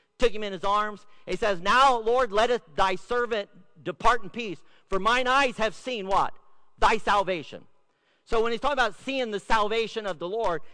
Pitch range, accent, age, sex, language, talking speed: 170-235 Hz, American, 50-69, male, English, 190 wpm